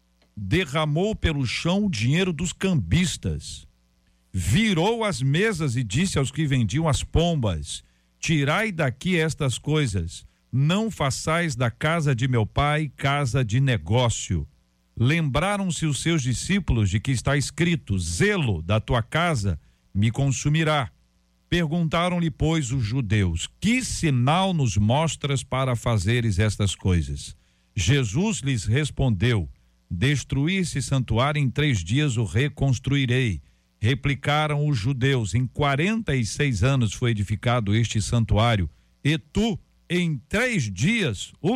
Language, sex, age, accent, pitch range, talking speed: Portuguese, male, 50-69, Brazilian, 105-155 Hz, 125 wpm